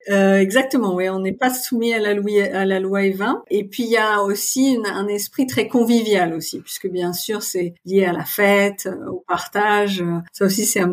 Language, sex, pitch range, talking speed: French, female, 185-220 Hz, 225 wpm